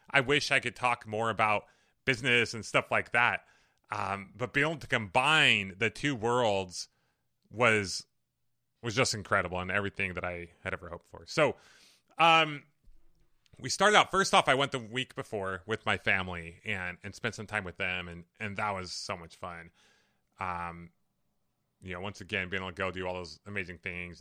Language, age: English, 30-49